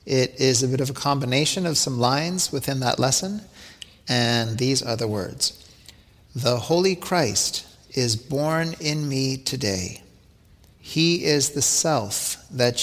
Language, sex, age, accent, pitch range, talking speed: English, male, 50-69, American, 110-140 Hz, 145 wpm